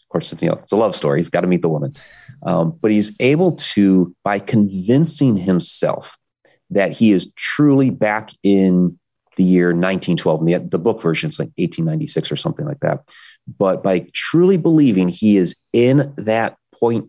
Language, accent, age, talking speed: English, American, 30-49, 180 wpm